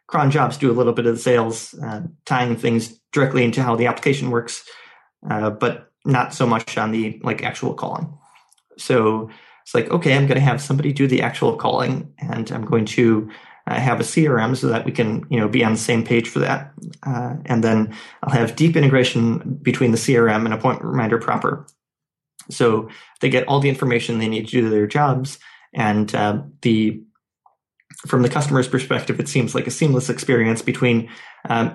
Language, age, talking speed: English, 20-39, 195 wpm